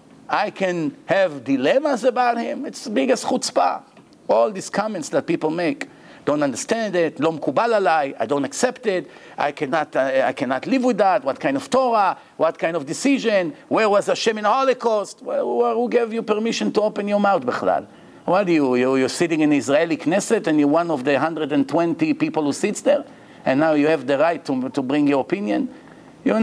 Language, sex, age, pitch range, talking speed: English, male, 50-69, 175-260 Hz, 190 wpm